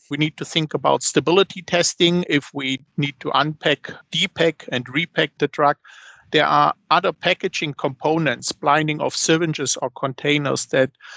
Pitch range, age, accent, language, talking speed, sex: 140-165 Hz, 50-69, German, English, 150 wpm, male